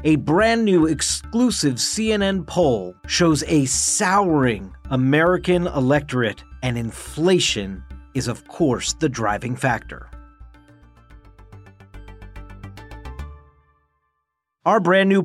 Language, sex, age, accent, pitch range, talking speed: English, male, 50-69, American, 125-170 Hz, 85 wpm